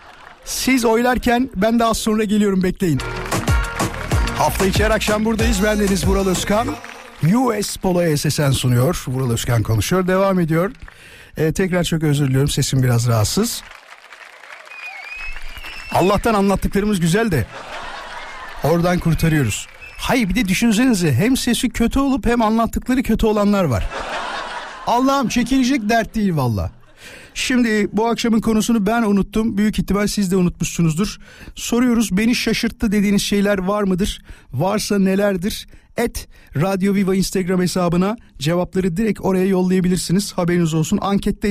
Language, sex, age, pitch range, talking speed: Turkish, male, 60-79, 165-215 Hz, 125 wpm